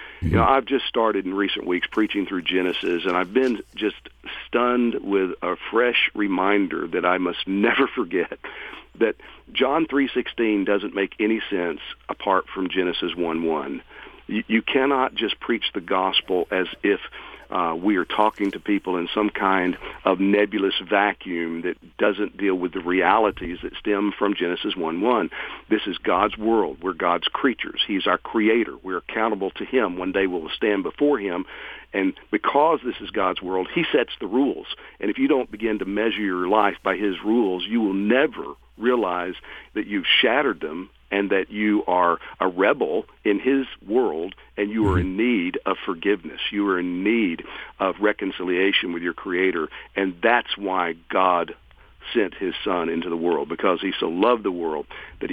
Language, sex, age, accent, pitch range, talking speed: English, male, 50-69, American, 95-115 Hz, 170 wpm